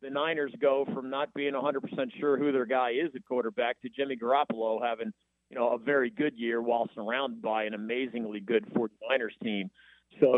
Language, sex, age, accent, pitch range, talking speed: English, male, 40-59, American, 125-170 Hz, 190 wpm